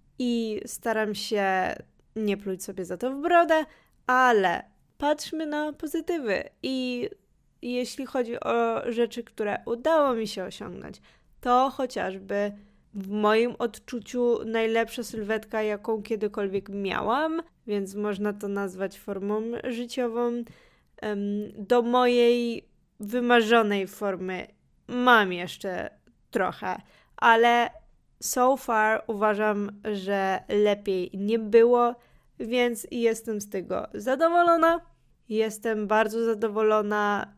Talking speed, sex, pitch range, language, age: 100 wpm, female, 205-240 Hz, Polish, 20-39